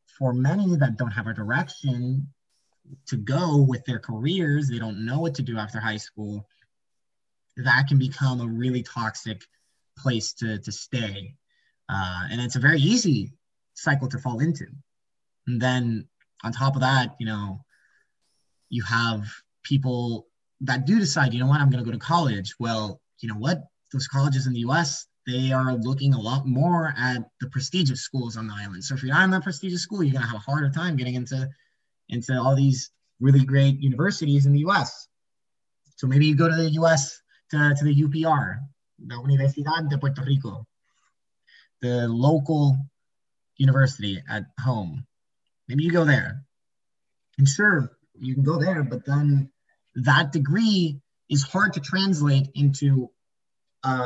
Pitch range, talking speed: 120-145 Hz, 170 wpm